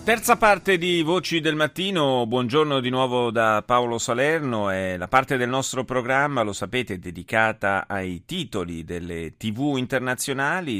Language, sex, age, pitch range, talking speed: Italian, male, 30-49, 110-185 Hz, 145 wpm